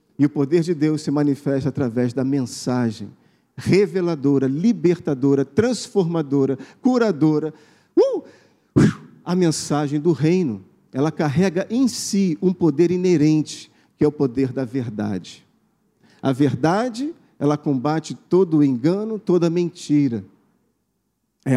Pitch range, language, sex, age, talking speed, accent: 145-225 Hz, Portuguese, male, 40-59, 110 wpm, Brazilian